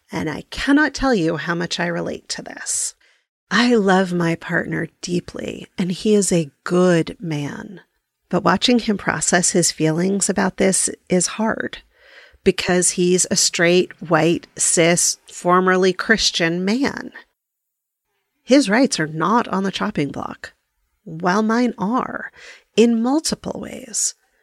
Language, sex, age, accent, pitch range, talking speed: English, female, 40-59, American, 175-225 Hz, 135 wpm